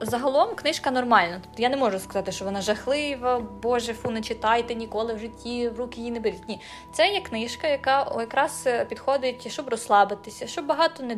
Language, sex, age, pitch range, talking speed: Ukrainian, female, 20-39, 205-270 Hz, 190 wpm